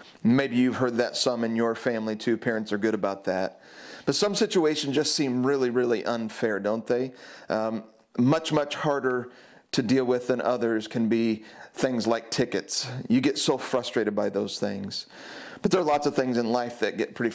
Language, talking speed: English, 195 wpm